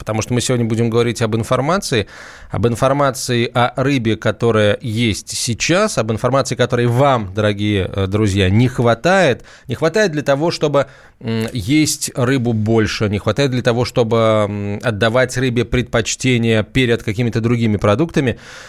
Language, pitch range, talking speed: Russian, 110-140 Hz, 140 wpm